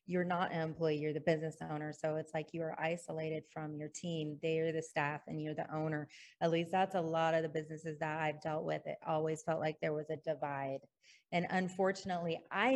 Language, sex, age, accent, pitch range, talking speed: English, female, 30-49, American, 155-180 Hz, 225 wpm